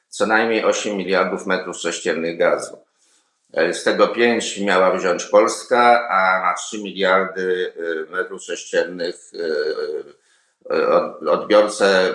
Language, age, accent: Polish, 50-69, native